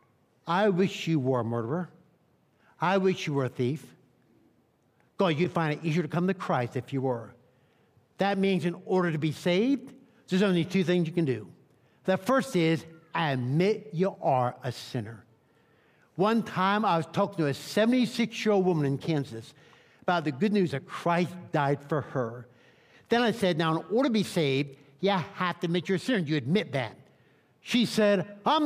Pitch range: 150-200 Hz